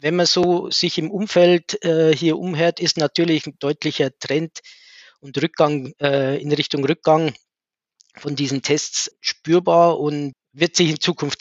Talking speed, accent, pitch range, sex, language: 155 wpm, Austrian, 145-175 Hz, male, German